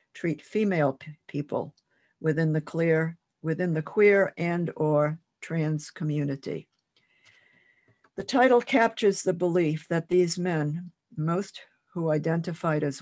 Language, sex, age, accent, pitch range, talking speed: English, female, 60-79, American, 150-180 Hz, 105 wpm